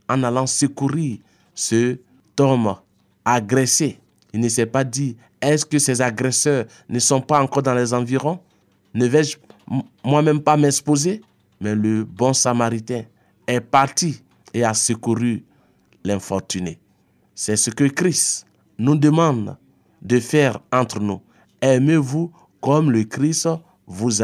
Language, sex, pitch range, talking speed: French, male, 110-145 Hz, 130 wpm